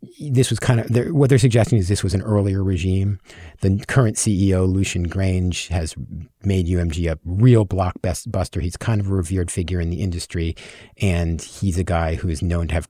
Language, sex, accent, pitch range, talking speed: English, male, American, 95-120 Hz, 195 wpm